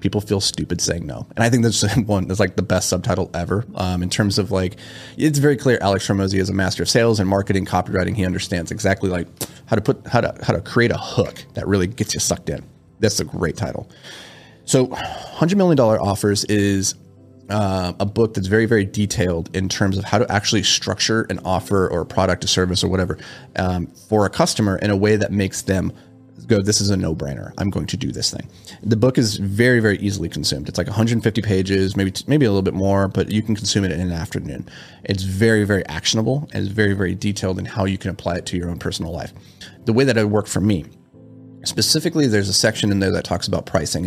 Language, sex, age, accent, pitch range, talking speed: English, male, 30-49, American, 90-110 Hz, 230 wpm